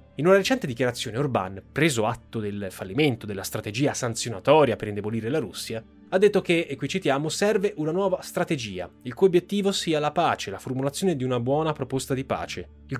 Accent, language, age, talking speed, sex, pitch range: native, Italian, 20-39, 190 wpm, male, 110-140 Hz